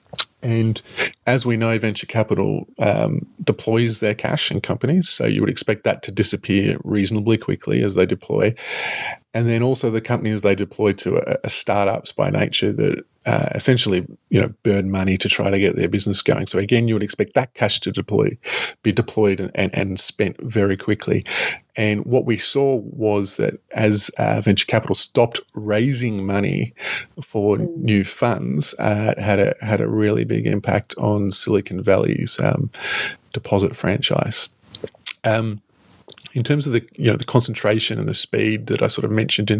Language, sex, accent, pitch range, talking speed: English, male, Australian, 105-120 Hz, 175 wpm